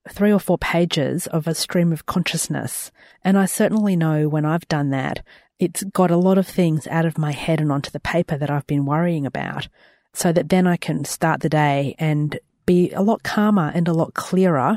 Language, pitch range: English, 150-190 Hz